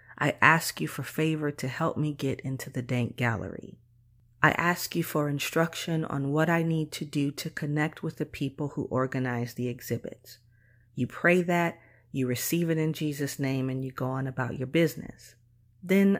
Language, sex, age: English, female, 40-59